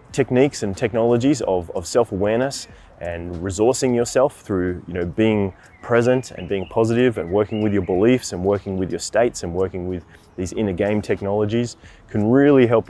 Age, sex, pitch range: 20-39, male, 95-120 Hz